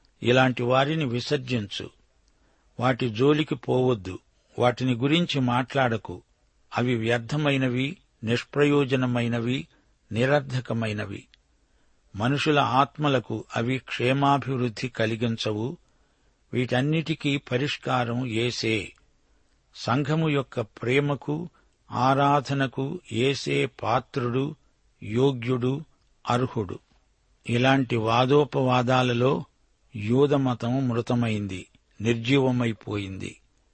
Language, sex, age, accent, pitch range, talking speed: Telugu, male, 60-79, native, 115-135 Hz, 60 wpm